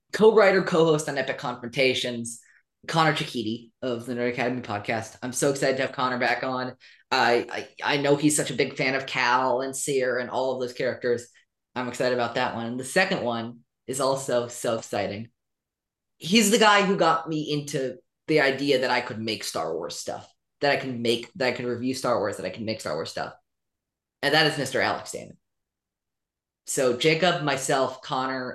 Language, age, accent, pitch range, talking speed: English, 20-39, American, 120-150 Hz, 200 wpm